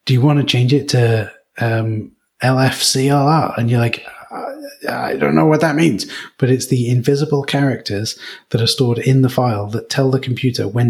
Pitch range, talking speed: 120-140 Hz, 195 wpm